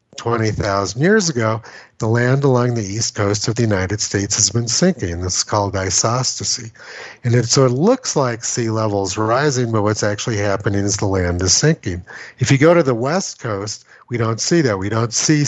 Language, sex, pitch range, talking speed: English, male, 100-130 Hz, 200 wpm